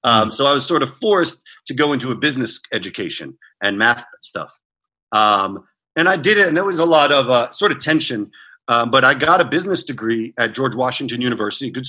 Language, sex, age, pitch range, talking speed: English, male, 40-59, 120-155 Hz, 220 wpm